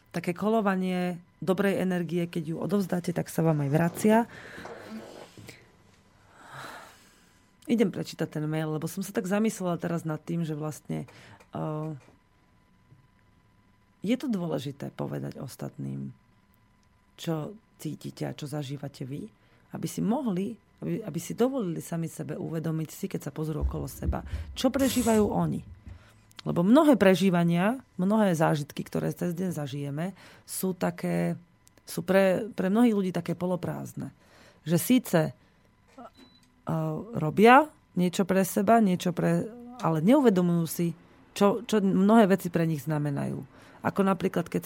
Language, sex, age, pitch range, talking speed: Slovak, female, 30-49, 155-195 Hz, 130 wpm